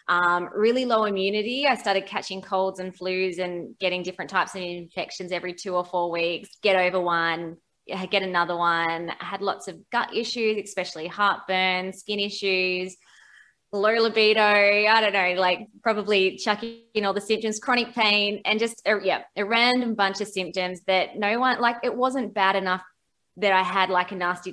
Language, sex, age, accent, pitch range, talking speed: English, female, 20-39, Australian, 180-220 Hz, 180 wpm